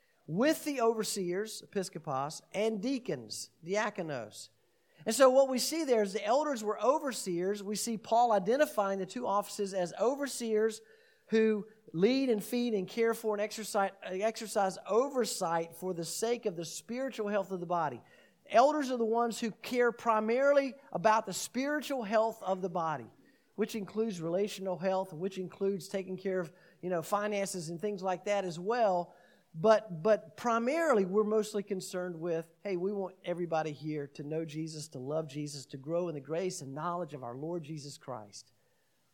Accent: American